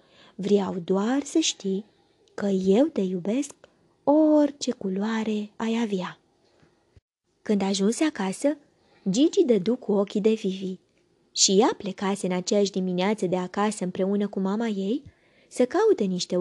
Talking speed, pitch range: 135 wpm, 195-245 Hz